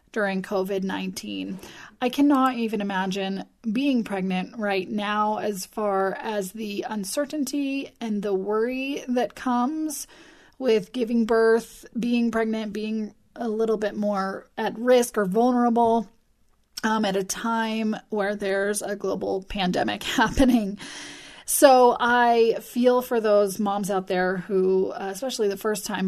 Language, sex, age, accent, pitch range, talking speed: English, female, 30-49, American, 195-240 Hz, 130 wpm